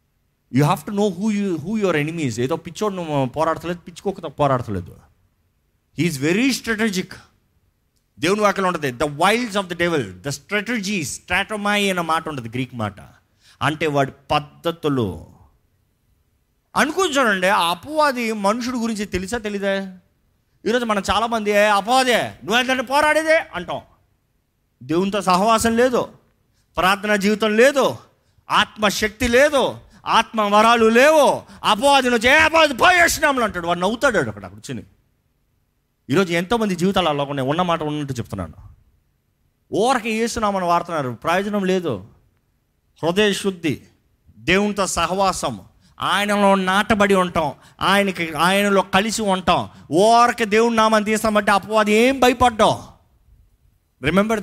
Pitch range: 150-220 Hz